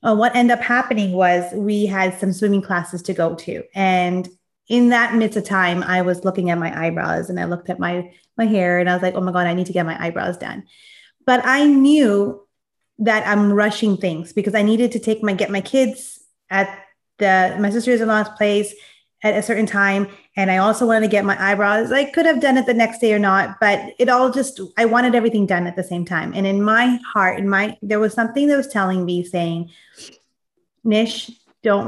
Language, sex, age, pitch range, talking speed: English, female, 30-49, 185-230 Hz, 225 wpm